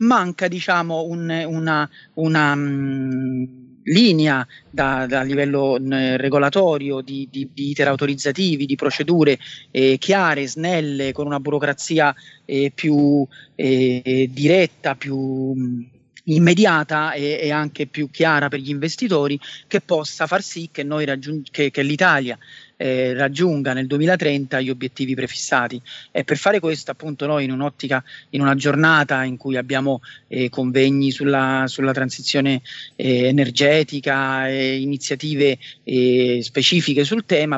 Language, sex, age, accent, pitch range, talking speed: Italian, male, 30-49, native, 130-150 Hz, 135 wpm